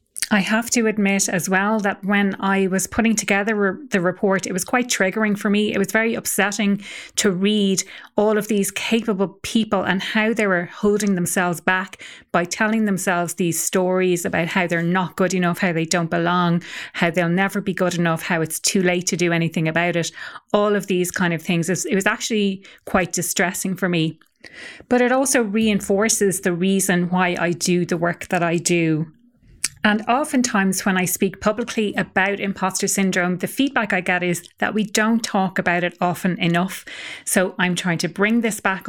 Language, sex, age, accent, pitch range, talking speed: English, female, 30-49, Irish, 175-210 Hz, 190 wpm